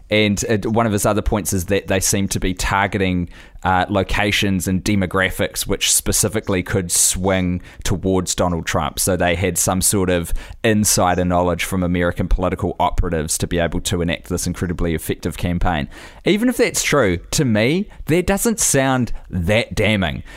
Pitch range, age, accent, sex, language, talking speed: 90-105 Hz, 20-39, Australian, male, English, 165 wpm